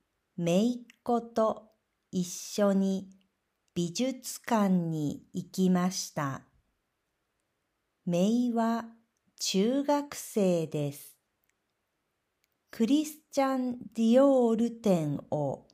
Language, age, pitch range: Japanese, 50-69, 180-240 Hz